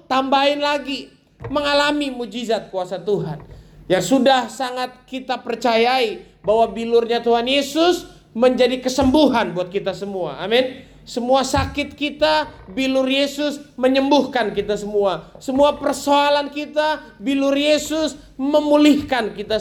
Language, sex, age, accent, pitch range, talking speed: Indonesian, male, 20-39, native, 205-280 Hz, 110 wpm